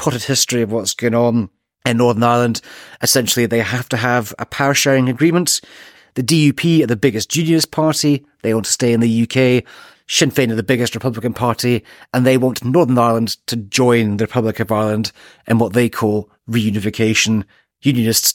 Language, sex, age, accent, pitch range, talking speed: English, male, 30-49, British, 110-135 Hz, 180 wpm